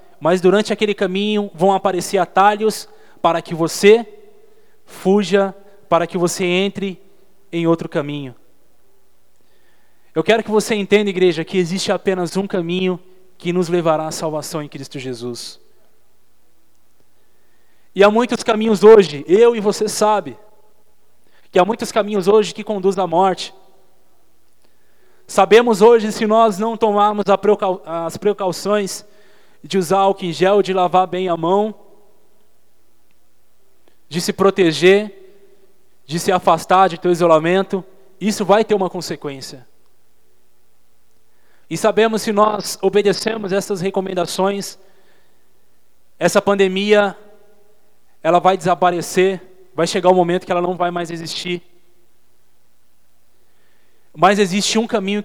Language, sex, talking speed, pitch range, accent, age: Portuguese, male, 125 wpm, 170-205 Hz, Brazilian, 20-39